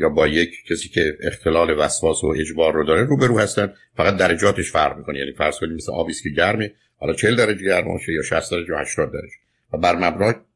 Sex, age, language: male, 60-79, Persian